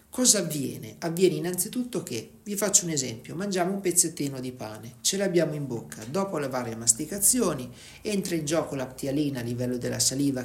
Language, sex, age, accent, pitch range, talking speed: Italian, male, 40-59, native, 130-165 Hz, 170 wpm